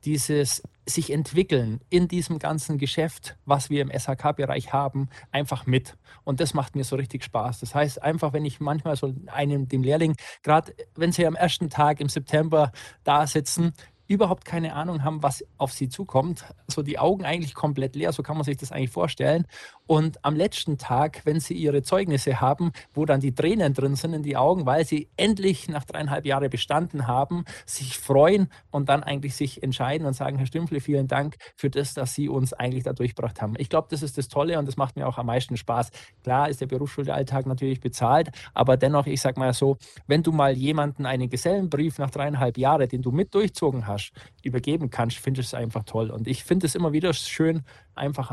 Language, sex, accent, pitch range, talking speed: German, male, German, 130-155 Hz, 205 wpm